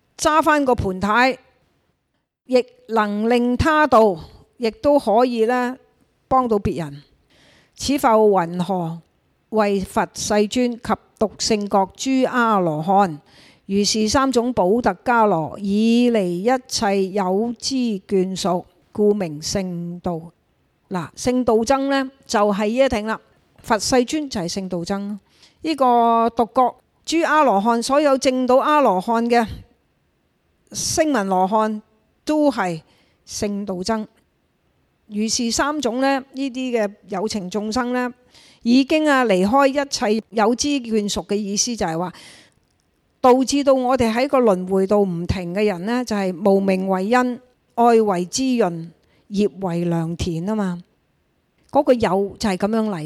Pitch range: 195-255 Hz